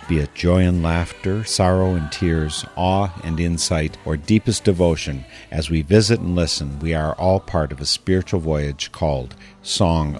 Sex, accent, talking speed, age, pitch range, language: male, American, 170 wpm, 50-69, 80-100 Hz, English